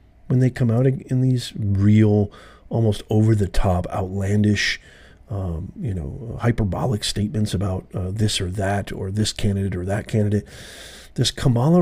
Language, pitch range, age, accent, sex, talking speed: English, 100-135 Hz, 40-59, American, male, 140 wpm